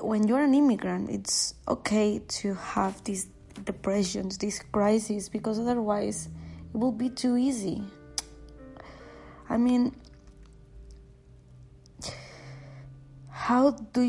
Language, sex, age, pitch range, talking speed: Spanish, female, 20-39, 195-225 Hz, 100 wpm